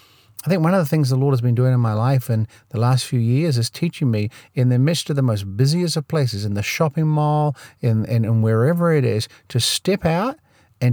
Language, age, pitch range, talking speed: English, 50-69, 115-150 Hz, 245 wpm